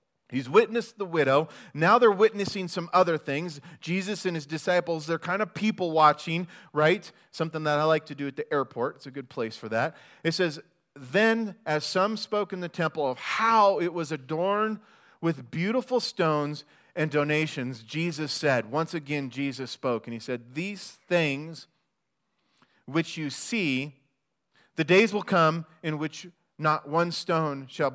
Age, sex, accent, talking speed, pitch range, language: 40-59, male, American, 165 wpm, 135-180 Hz, English